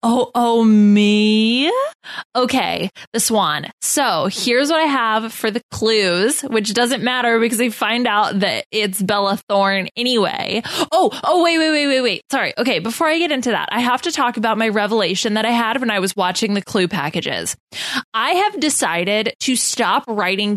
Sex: female